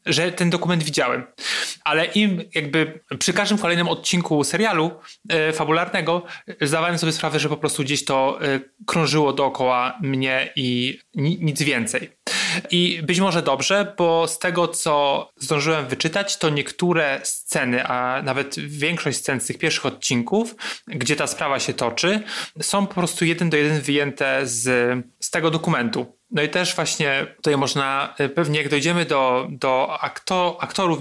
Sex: male